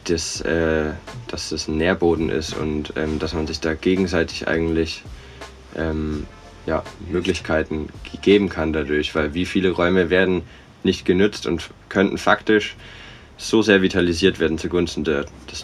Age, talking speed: 20-39, 135 wpm